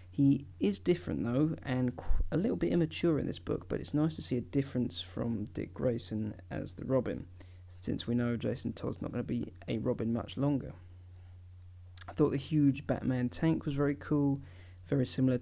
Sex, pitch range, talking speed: male, 90-140 Hz, 195 wpm